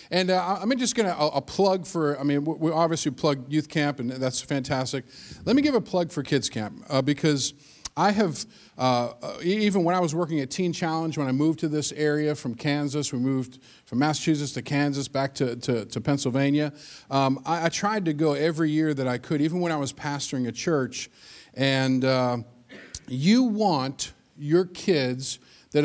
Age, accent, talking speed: 40-59, American, 195 wpm